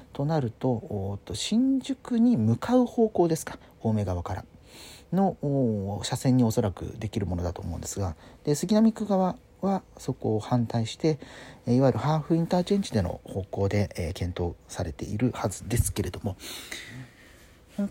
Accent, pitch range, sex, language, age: native, 100-145 Hz, male, Japanese, 40-59